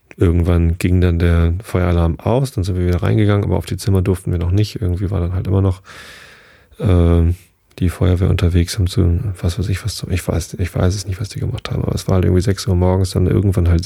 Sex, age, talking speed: male, 30-49, 245 wpm